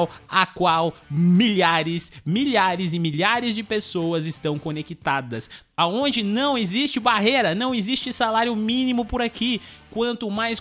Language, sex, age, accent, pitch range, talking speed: Portuguese, male, 20-39, Brazilian, 175-235 Hz, 125 wpm